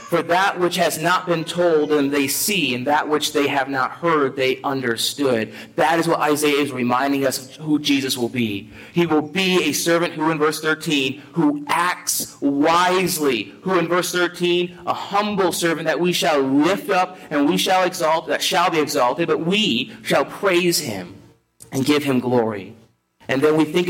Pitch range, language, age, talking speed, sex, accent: 140-180 Hz, English, 30-49, 190 wpm, male, American